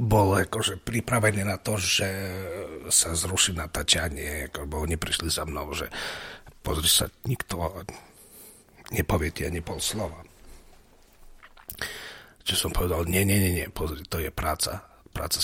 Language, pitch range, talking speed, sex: Slovak, 80-105 Hz, 135 wpm, male